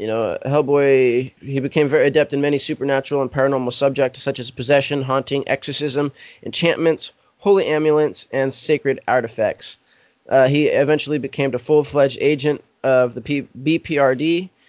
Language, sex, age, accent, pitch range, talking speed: English, male, 20-39, American, 125-145 Hz, 140 wpm